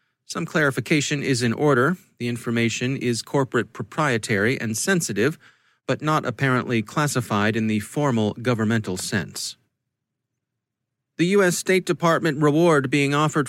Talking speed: 125 wpm